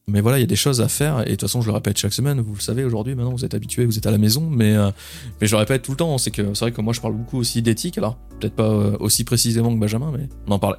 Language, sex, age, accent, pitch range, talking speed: French, male, 20-39, French, 105-130 Hz, 350 wpm